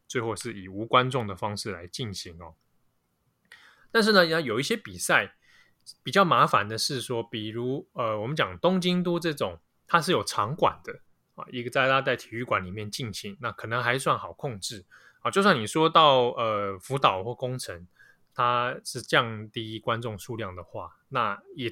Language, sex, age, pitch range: Chinese, male, 20-39, 105-140 Hz